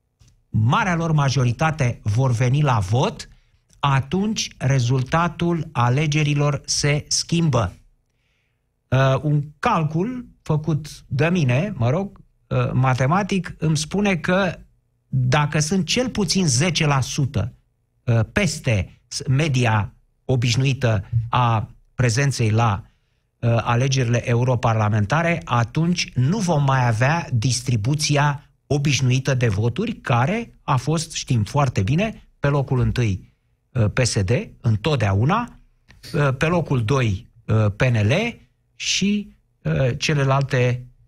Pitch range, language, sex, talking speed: 120-170 Hz, Romanian, male, 90 wpm